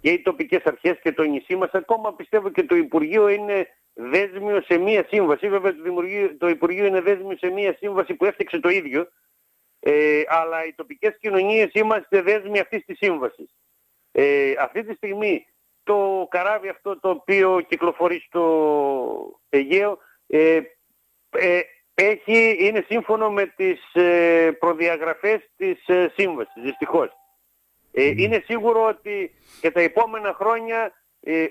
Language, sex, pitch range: Greek, male, 170-215 Hz